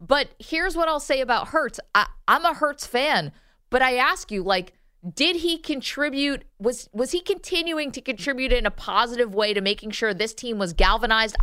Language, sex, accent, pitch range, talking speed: English, female, American, 195-255 Hz, 190 wpm